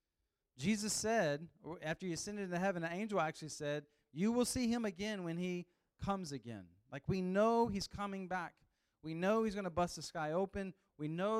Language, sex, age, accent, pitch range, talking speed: English, male, 40-59, American, 120-170 Hz, 195 wpm